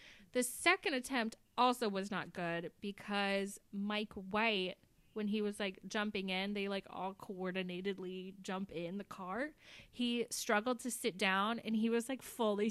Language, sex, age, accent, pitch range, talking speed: English, female, 20-39, American, 190-250 Hz, 160 wpm